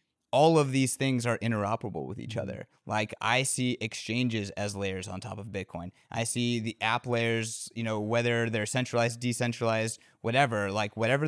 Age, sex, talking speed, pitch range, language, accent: 20-39, male, 175 wpm, 105-125 Hz, English, American